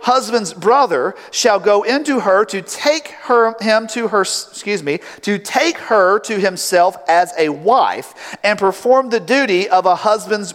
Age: 50-69